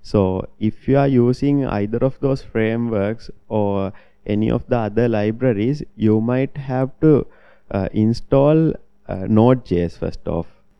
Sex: male